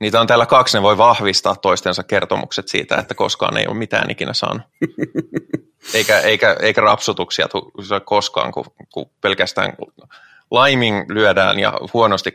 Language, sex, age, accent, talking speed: Finnish, male, 30-49, native, 150 wpm